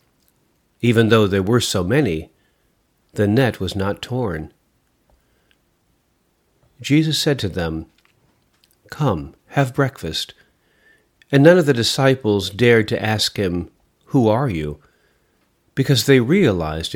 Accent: American